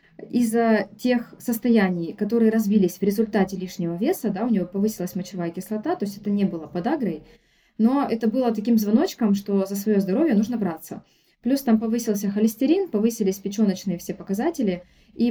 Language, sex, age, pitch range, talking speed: Russian, female, 20-39, 195-230 Hz, 155 wpm